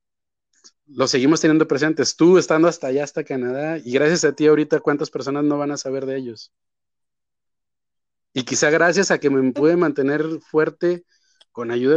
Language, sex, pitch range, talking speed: Spanish, male, 125-155 Hz, 170 wpm